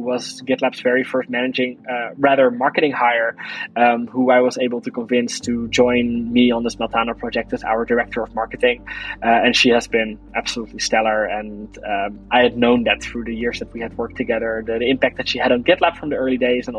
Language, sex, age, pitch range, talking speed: English, male, 20-39, 125-150 Hz, 220 wpm